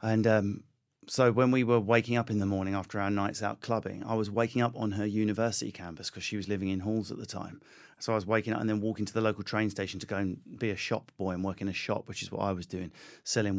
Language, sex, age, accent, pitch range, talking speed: English, male, 30-49, British, 100-115 Hz, 285 wpm